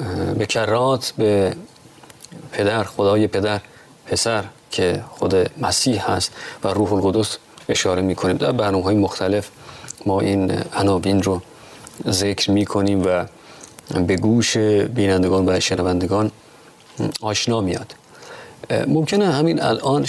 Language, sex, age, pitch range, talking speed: Persian, male, 30-49, 100-120 Hz, 115 wpm